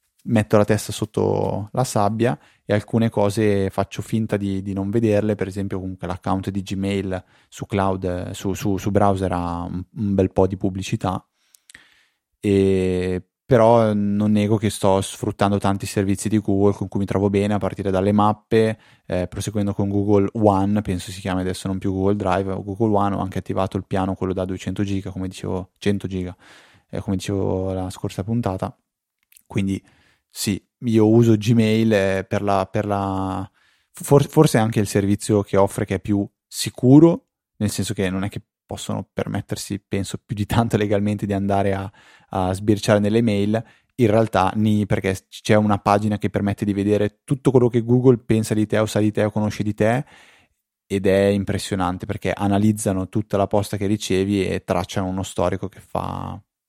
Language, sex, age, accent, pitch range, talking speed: Italian, male, 20-39, native, 95-105 Hz, 180 wpm